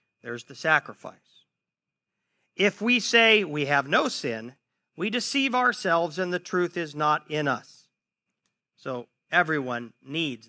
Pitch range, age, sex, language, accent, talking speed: 150-215 Hz, 50-69, male, English, American, 130 wpm